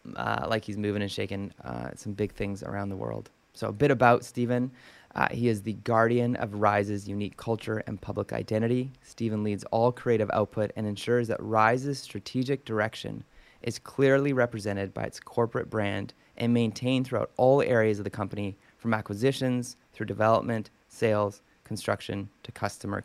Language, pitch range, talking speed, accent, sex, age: English, 105-125 Hz, 165 wpm, American, male, 20-39